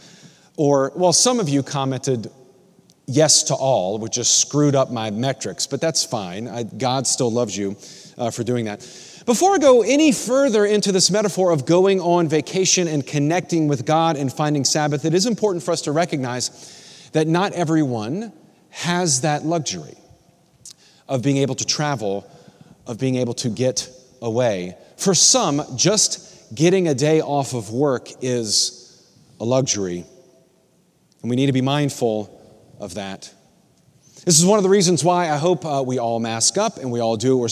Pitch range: 125-185 Hz